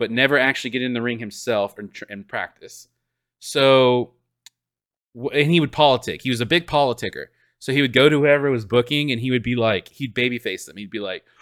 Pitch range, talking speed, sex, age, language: 125-195 Hz, 210 wpm, male, 20-39, English